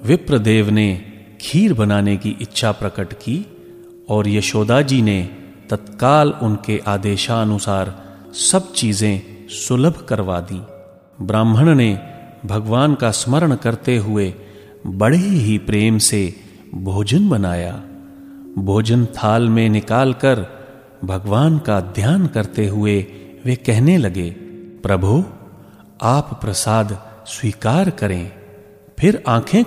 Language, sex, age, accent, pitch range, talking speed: Hindi, male, 40-59, native, 100-150 Hz, 105 wpm